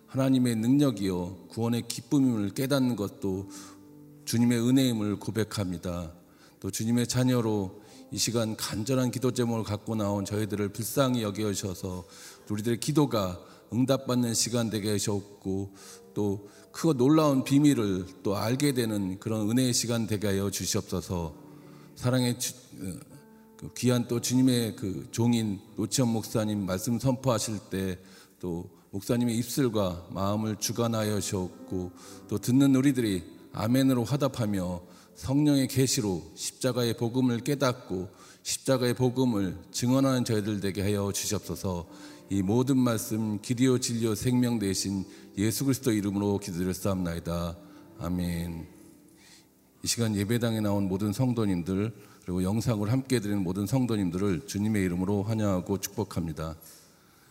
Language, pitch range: Korean, 95-125 Hz